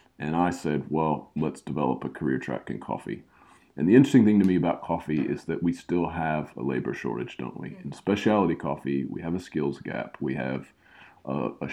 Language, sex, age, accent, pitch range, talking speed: English, male, 40-59, American, 75-90 Hz, 210 wpm